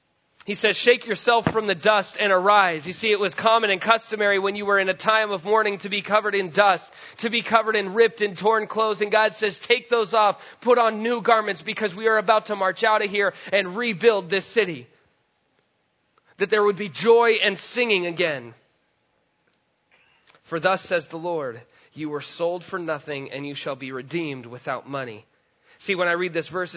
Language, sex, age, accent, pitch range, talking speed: English, male, 30-49, American, 175-215 Hz, 205 wpm